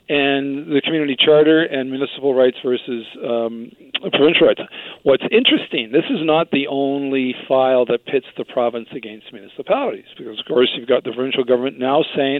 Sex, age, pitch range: male, 50-69, 125-155 Hz